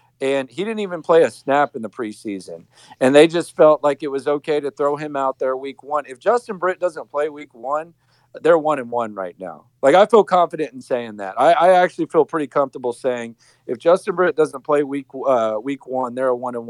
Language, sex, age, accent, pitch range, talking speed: English, male, 50-69, American, 125-150 Hz, 235 wpm